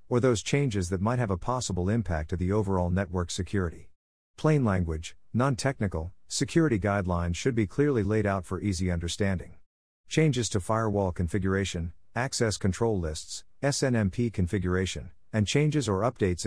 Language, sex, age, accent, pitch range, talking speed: English, male, 50-69, American, 90-115 Hz, 145 wpm